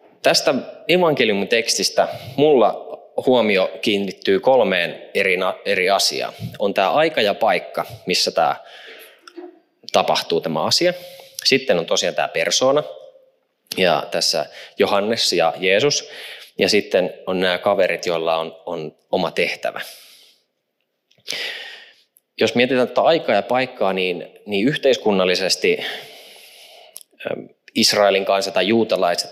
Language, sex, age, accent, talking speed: Finnish, male, 20-39, native, 105 wpm